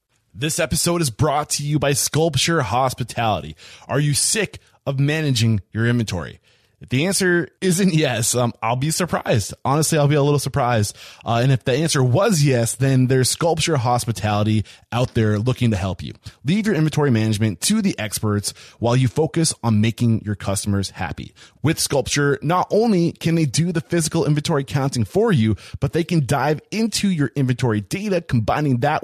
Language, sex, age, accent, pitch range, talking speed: English, male, 20-39, American, 115-160 Hz, 180 wpm